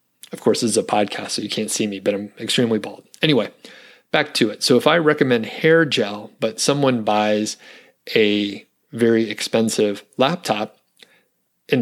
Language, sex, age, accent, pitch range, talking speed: English, male, 30-49, American, 110-130 Hz, 170 wpm